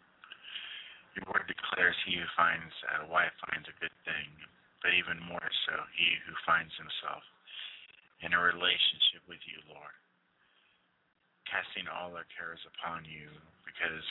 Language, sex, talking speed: English, male, 140 wpm